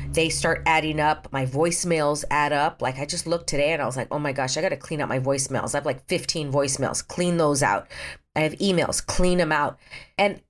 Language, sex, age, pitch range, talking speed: English, female, 40-59, 145-195 Hz, 235 wpm